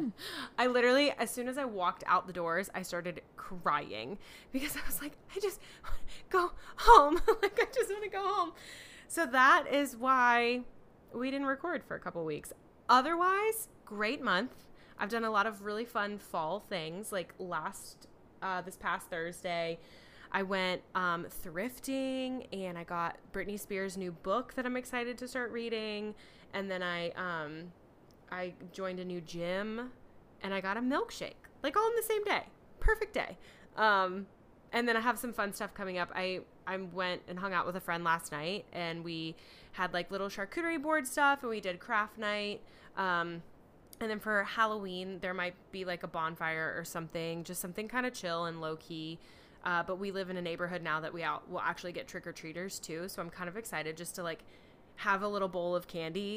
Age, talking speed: 20-39, 195 wpm